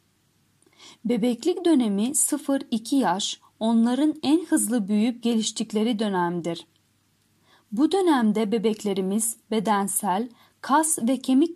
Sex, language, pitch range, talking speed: female, Turkish, 210-275 Hz, 90 wpm